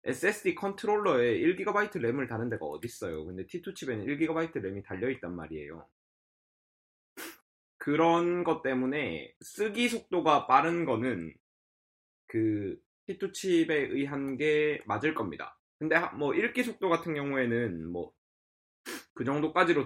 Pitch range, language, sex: 115-165 Hz, English, male